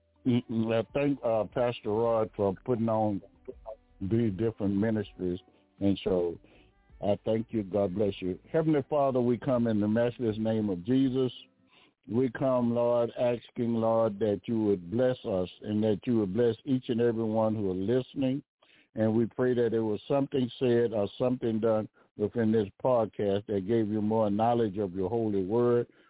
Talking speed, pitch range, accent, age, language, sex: 170 wpm, 100-125 Hz, American, 60-79, English, male